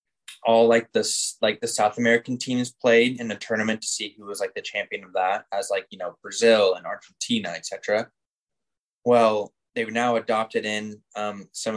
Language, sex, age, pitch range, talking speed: English, male, 10-29, 105-125 Hz, 185 wpm